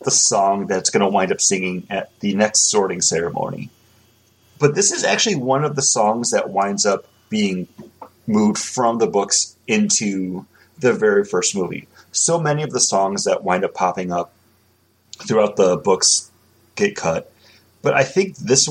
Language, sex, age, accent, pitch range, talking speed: English, male, 30-49, American, 100-150 Hz, 170 wpm